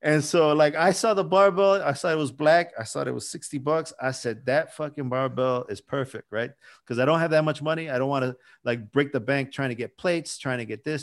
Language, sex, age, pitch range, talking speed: English, male, 30-49, 125-170 Hz, 260 wpm